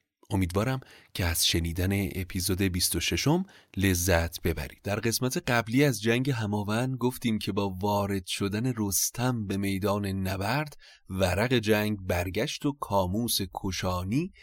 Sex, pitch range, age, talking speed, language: male, 95-115 Hz, 30-49, 120 wpm, Persian